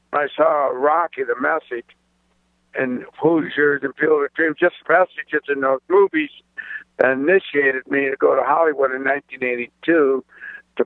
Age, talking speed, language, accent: 60-79, 145 wpm, English, American